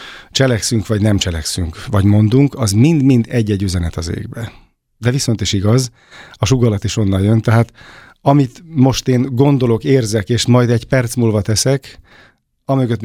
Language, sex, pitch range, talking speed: Hungarian, male, 105-125 Hz, 155 wpm